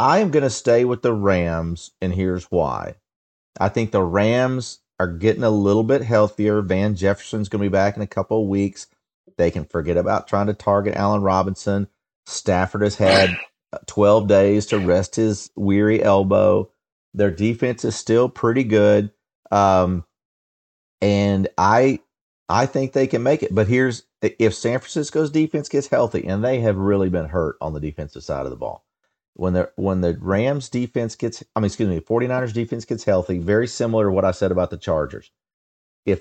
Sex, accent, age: male, American, 40-59